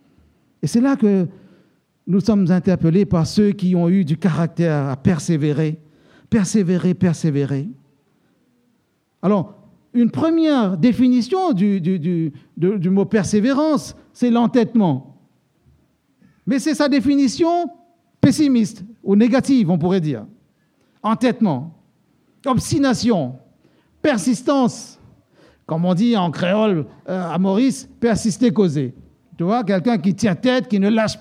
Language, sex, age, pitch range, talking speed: French, male, 50-69, 185-250 Hz, 120 wpm